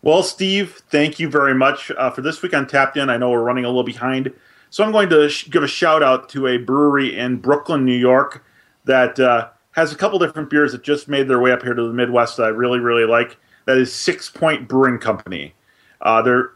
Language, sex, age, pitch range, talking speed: English, male, 30-49, 120-150 Hz, 235 wpm